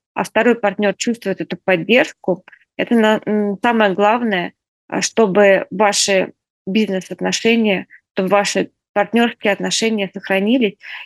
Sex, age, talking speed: female, 20-39, 90 wpm